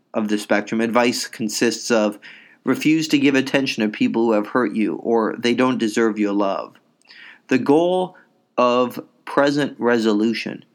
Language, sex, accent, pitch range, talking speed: English, male, American, 105-130 Hz, 150 wpm